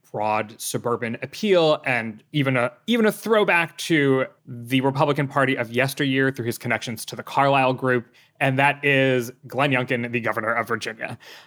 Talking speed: 160 wpm